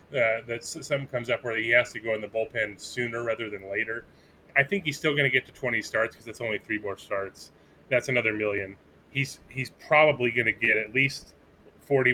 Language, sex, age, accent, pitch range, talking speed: English, male, 30-49, American, 110-130 Hz, 220 wpm